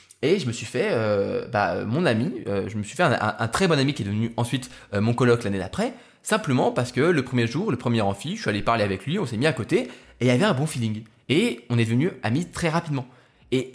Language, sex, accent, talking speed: French, male, French, 280 wpm